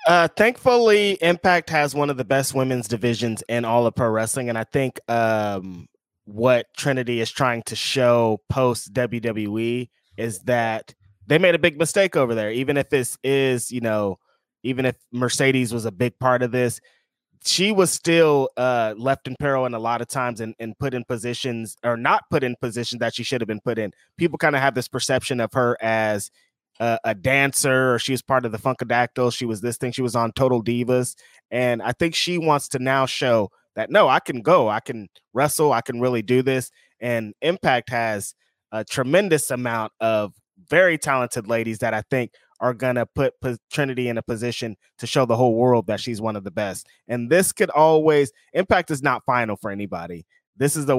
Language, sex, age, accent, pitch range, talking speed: English, male, 20-39, American, 115-135 Hz, 205 wpm